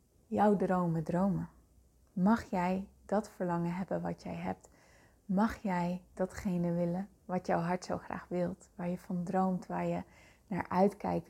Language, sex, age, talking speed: Dutch, female, 20-39, 155 wpm